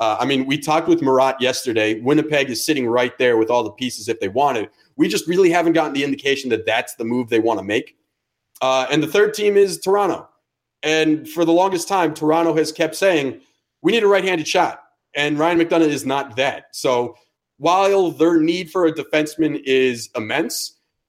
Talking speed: 200 wpm